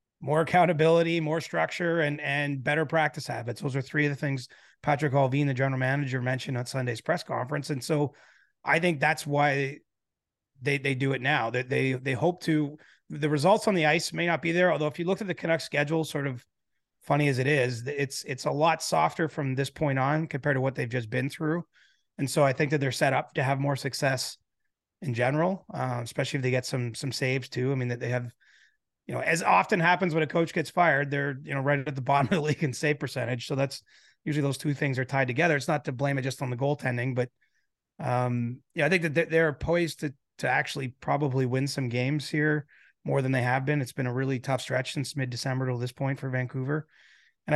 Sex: male